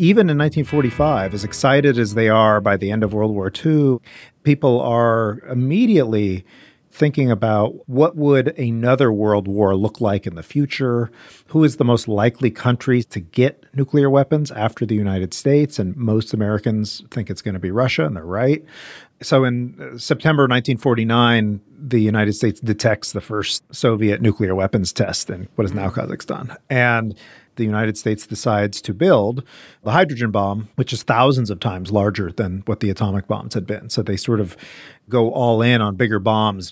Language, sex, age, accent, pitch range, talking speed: English, male, 40-59, American, 105-130 Hz, 175 wpm